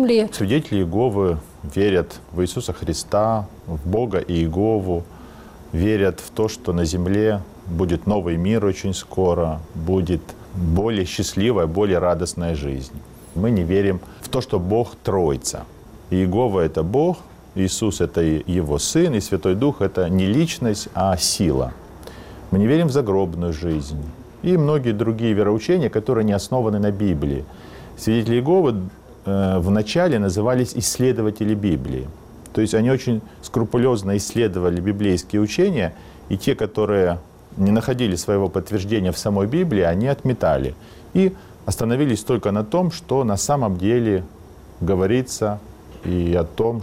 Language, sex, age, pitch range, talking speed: Russian, male, 40-59, 90-110 Hz, 135 wpm